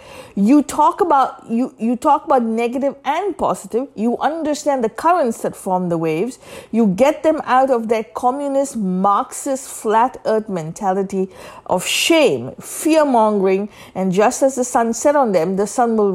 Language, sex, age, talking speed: English, female, 50-69, 160 wpm